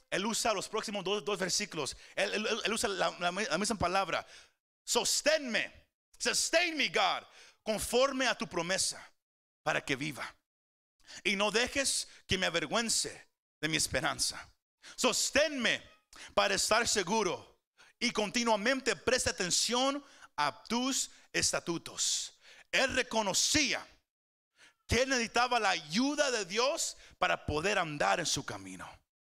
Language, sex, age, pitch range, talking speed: Spanish, male, 40-59, 190-265 Hz, 125 wpm